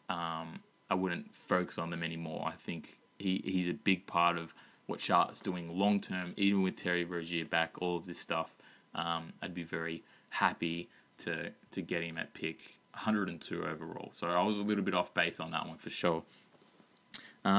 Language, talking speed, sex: English, 185 wpm, male